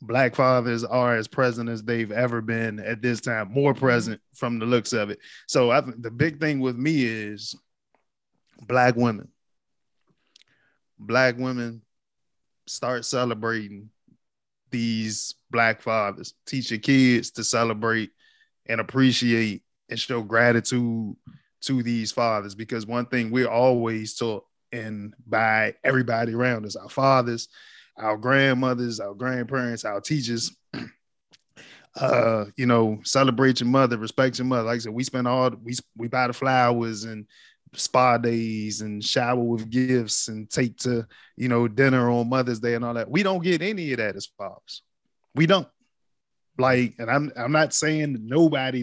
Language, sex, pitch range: English, male, 115-130 Hz